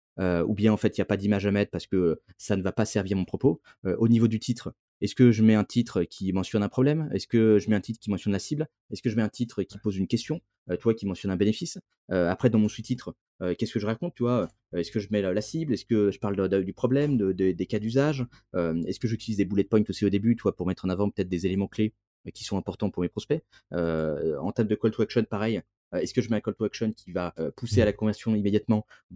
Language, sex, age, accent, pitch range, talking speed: French, male, 20-39, French, 100-120 Hz, 295 wpm